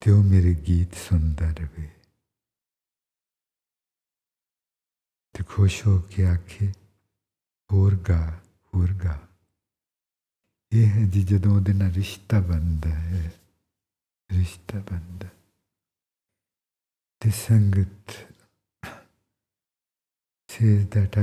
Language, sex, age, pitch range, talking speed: English, male, 60-79, 85-100 Hz, 40 wpm